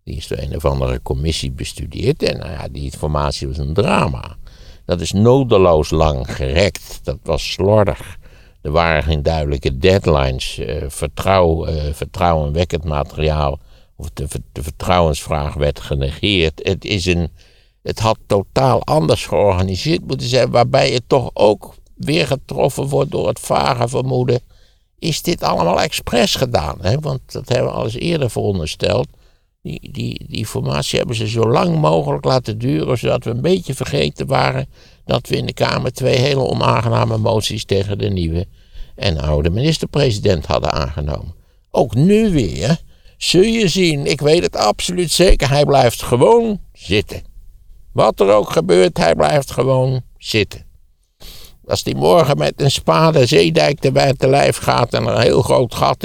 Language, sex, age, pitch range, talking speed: Dutch, male, 60-79, 75-125 Hz, 155 wpm